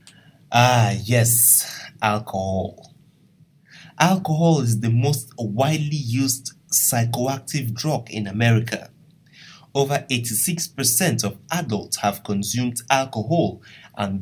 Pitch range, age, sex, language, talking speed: 110-150 Hz, 30-49, male, English, 90 wpm